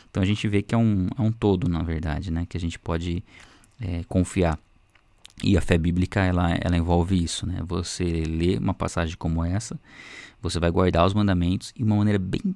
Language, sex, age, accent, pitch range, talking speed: Portuguese, male, 20-39, Brazilian, 85-100 Hz, 195 wpm